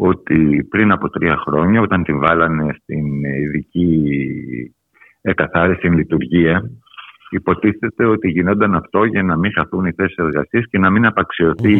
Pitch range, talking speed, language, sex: 80-115 Hz, 140 wpm, Greek, male